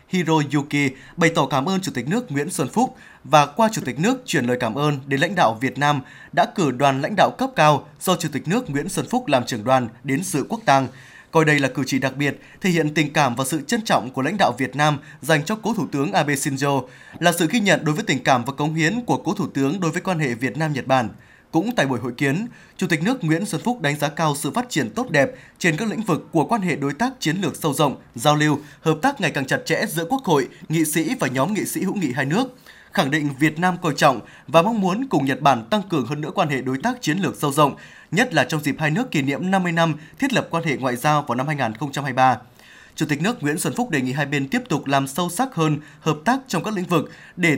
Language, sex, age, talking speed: Vietnamese, male, 20-39, 270 wpm